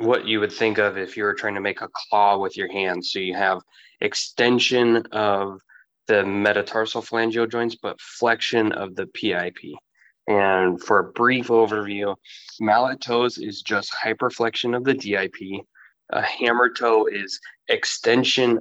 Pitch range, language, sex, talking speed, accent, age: 100-115 Hz, English, male, 155 wpm, American, 20-39